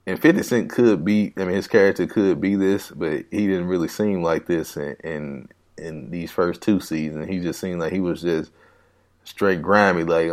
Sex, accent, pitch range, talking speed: male, American, 85-100 Hz, 210 wpm